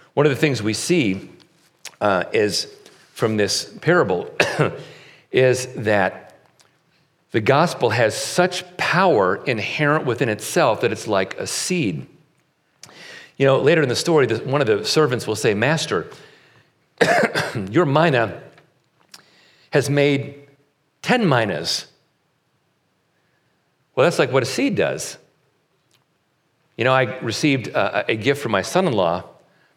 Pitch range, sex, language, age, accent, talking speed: 125-160 Hz, male, English, 50-69, American, 125 wpm